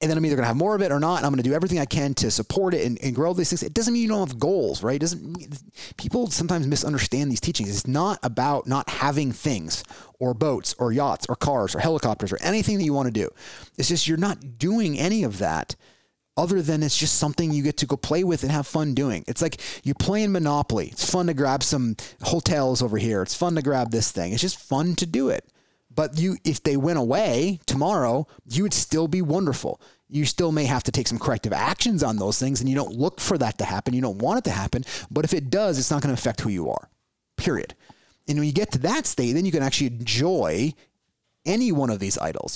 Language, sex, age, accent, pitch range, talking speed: English, male, 30-49, American, 125-175 Hz, 255 wpm